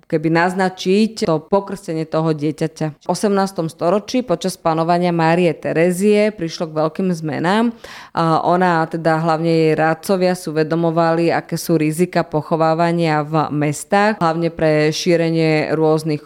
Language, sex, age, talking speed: Slovak, female, 20-39, 125 wpm